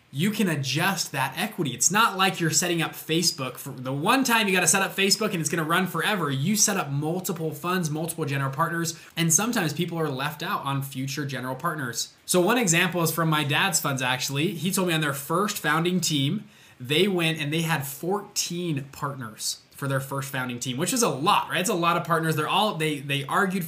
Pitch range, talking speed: 140-180 Hz, 225 wpm